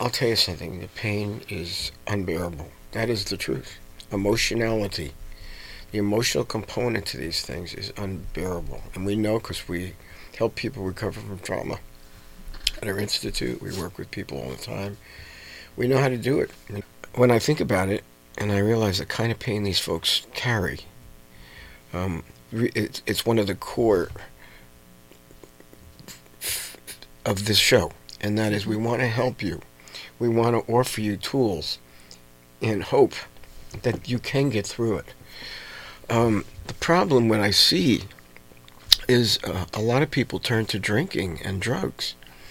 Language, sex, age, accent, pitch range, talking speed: English, male, 50-69, American, 65-110 Hz, 155 wpm